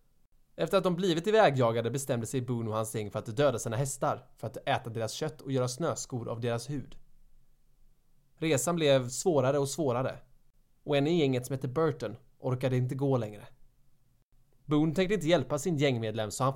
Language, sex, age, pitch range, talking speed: Swedish, male, 20-39, 125-150 Hz, 180 wpm